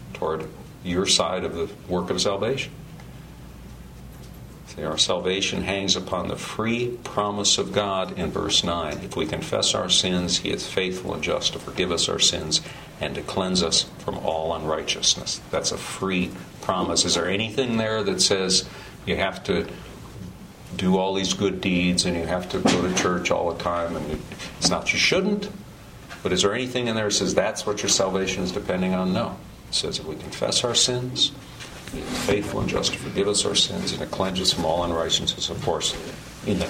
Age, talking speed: 50-69, 195 wpm